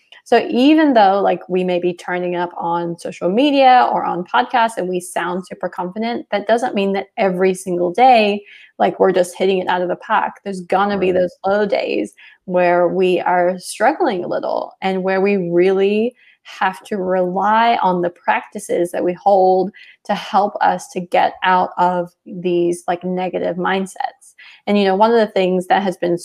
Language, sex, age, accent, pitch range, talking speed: English, female, 20-39, American, 180-225 Hz, 190 wpm